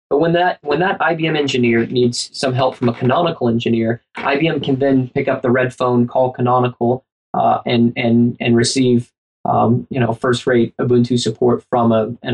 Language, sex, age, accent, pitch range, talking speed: English, male, 20-39, American, 120-140 Hz, 190 wpm